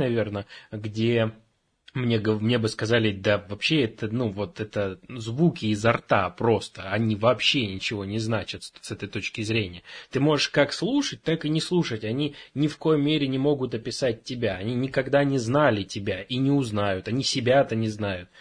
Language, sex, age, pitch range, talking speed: Russian, male, 20-39, 110-135 Hz, 180 wpm